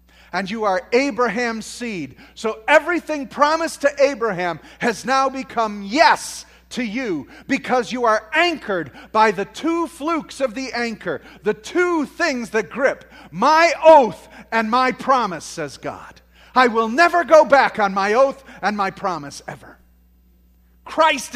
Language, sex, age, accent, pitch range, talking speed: English, male, 40-59, American, 190-255 Hz, 145 wpm